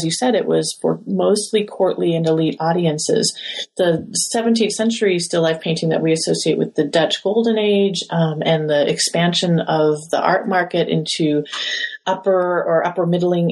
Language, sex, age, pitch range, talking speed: English, female, 30-49, 160-205 Hz, 165 wpm